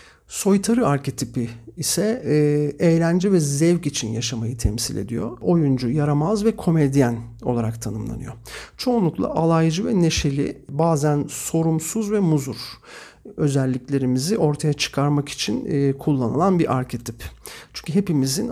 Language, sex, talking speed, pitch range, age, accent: Turkish, male, 110 wpm, 130-170 Hz, 50-69, native